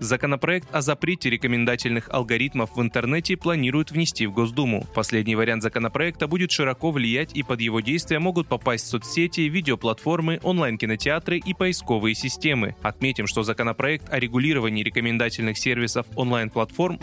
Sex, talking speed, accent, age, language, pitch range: male, 130 wpm, native, 20-39, Russian, 115-160 Hz